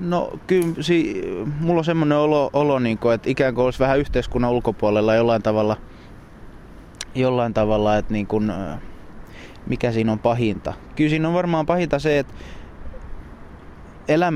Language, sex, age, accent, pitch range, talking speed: Finnish, male, 20-39, native, 110-140 Hz, 145 wpm